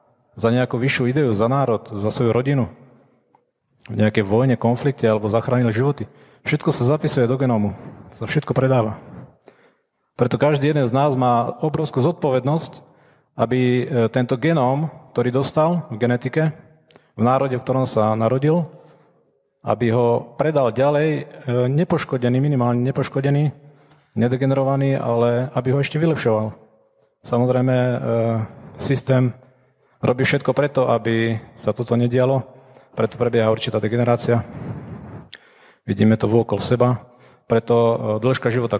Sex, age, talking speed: male, 40-59, 120 wpm